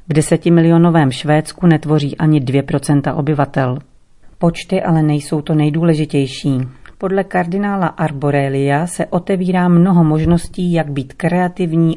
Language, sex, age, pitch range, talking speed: Czech, female, 40-59, 145-180 Hz, 110 wpm